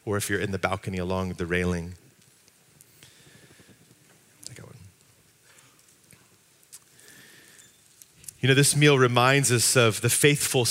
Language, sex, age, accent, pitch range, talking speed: English, male, 30-49, American, 110-140 Hz, 100 wpm